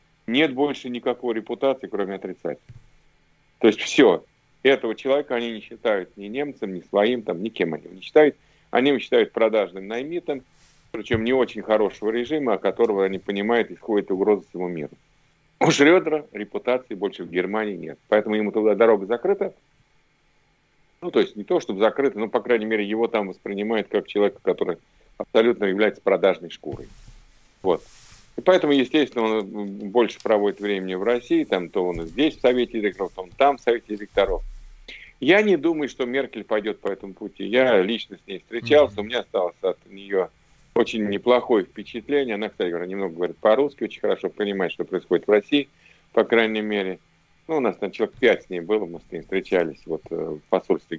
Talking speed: 175 wpm